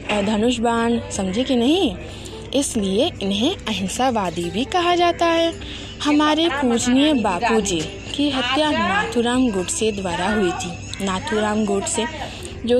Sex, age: female, 20-39